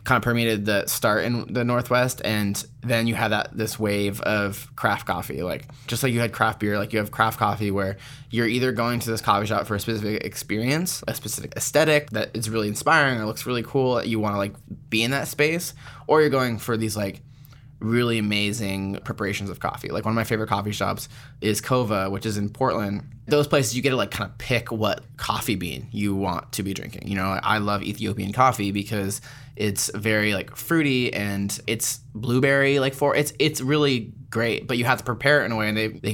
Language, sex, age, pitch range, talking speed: English, male, 20-39, 105-125 Hz, 220 wpm